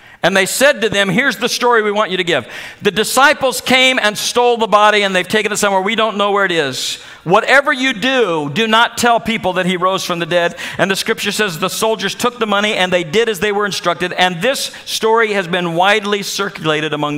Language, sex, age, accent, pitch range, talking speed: English, male, 50-69, American, 180-235 Hz, 240 wpm